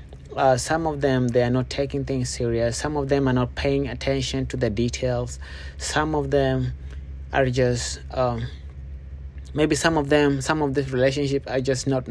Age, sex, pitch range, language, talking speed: 30-49, male, 115-135 Hz, English, 185 wpm